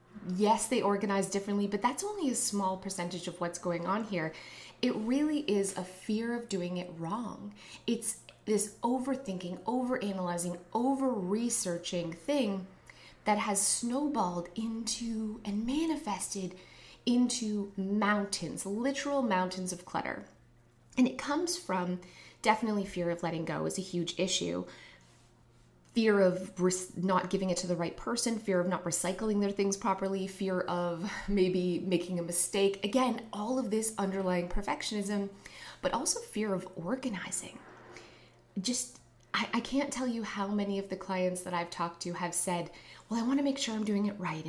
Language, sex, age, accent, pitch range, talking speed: English, female, 20-39, American, 180-230 Hz, 155 wpm